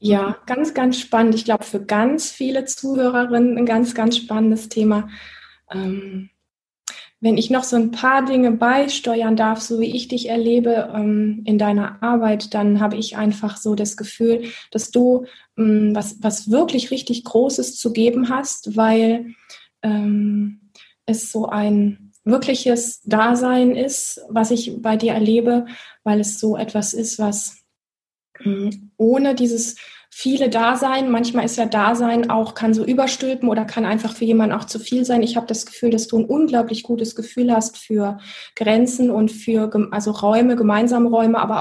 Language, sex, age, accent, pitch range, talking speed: German, female, 20-39, German, 210-240 Hz, 155 wpm